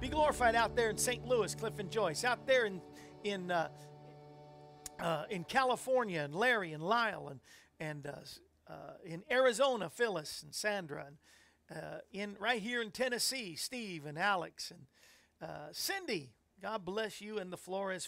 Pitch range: 165-220 Hz